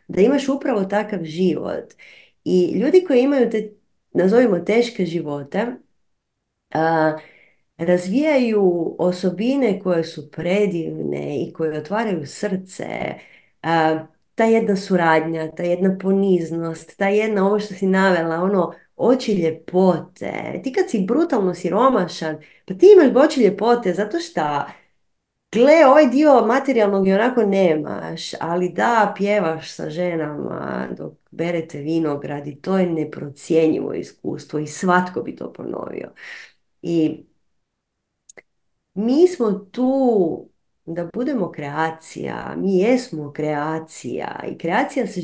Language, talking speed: Croatian, 115 wpm